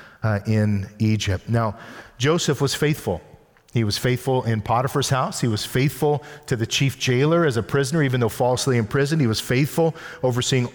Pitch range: 120-150 Hz